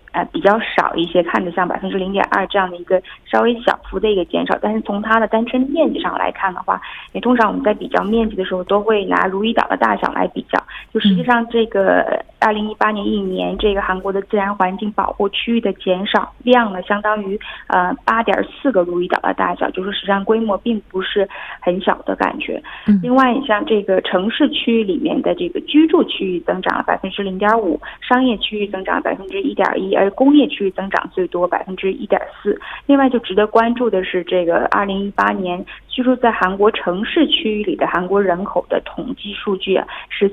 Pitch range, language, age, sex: 190-240 Hz, Korean, 20-39, female